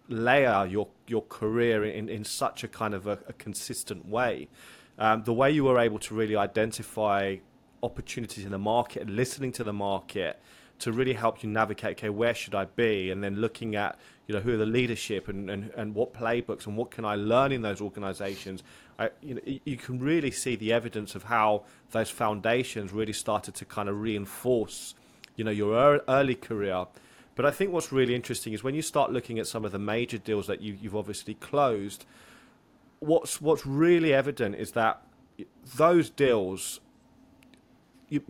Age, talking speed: 30-49, 190 wpm